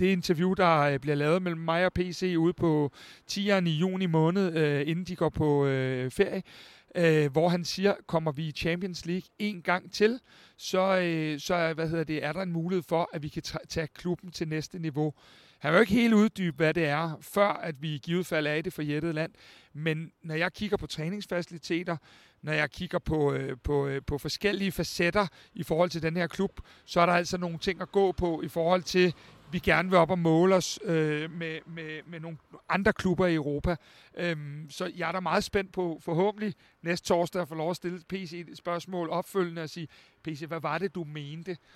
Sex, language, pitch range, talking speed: male, Danish, 160-185 Hz, 205 wpm